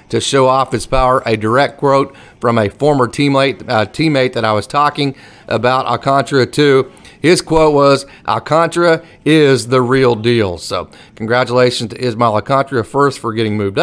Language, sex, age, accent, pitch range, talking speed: English, male, 30-49, American, 120-150 Hz, 165 wpm